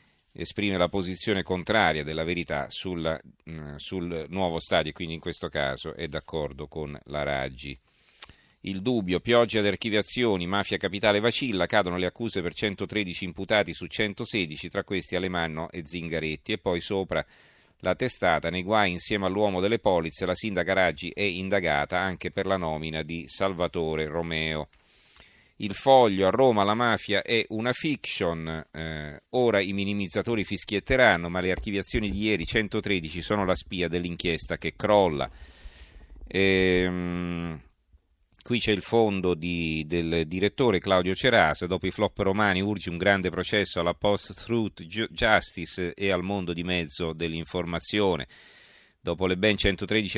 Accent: native